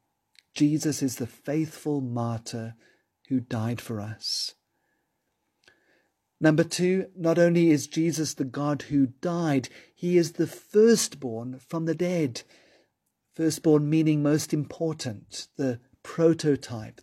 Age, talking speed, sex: 50-69, 115 wpm, male